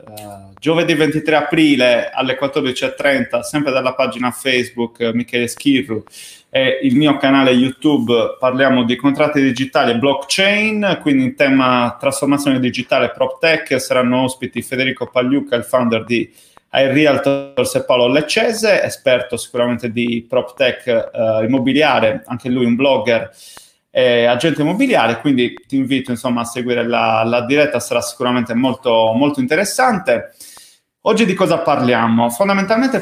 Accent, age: native, 30-49